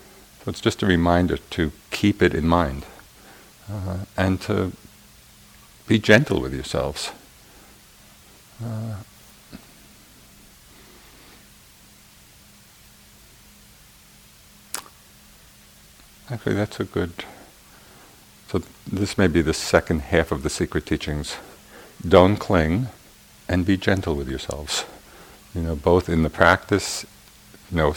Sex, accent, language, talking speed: male, American, English, 105 wpm